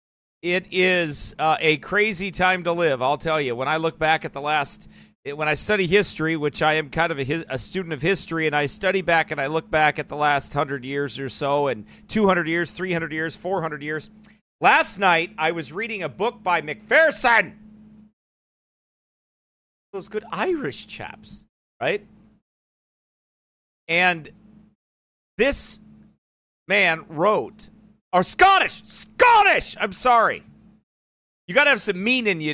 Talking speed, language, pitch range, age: 155 wpm, English, 150-210 Hz, 40-59